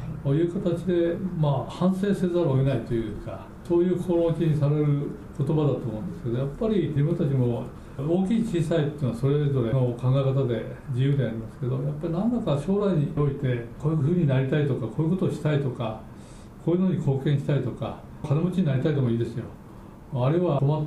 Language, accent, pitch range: Japanese, native, 125-170 Hz